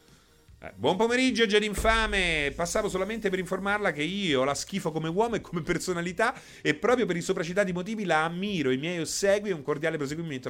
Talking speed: 175 wpm